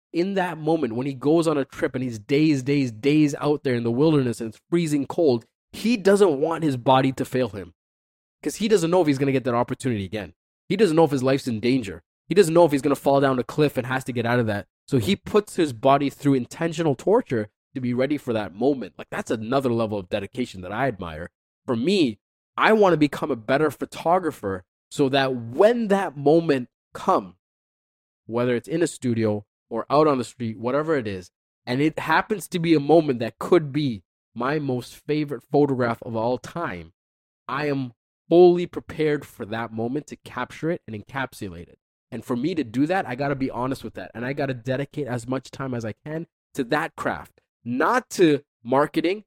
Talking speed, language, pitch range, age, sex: 215 wpm, English, 120-160 Hz, 20-39, male